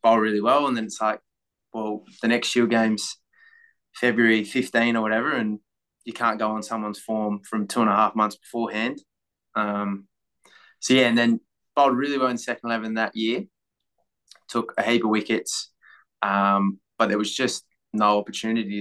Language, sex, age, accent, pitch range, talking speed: English, male, 20-39, Australian, 105-115 Hz, 175 wpm